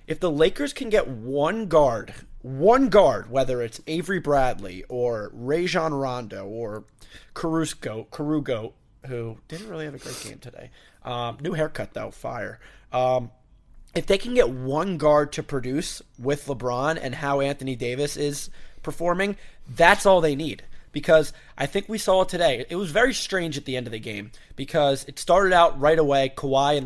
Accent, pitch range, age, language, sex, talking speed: American, 135-165 Hz, 30-49, English, male, 170 wpm